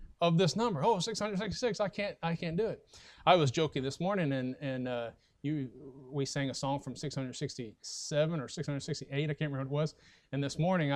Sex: male